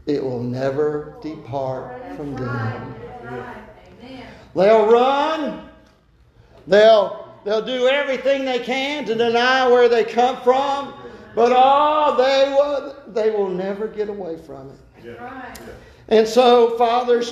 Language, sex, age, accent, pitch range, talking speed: English, male, 50-69, American, 155-245 Hz, 120 wpm